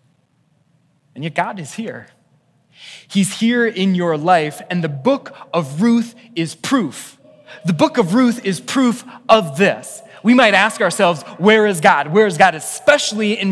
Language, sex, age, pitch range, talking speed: English, male, 20-39, 155-210 Hz, 165 wpm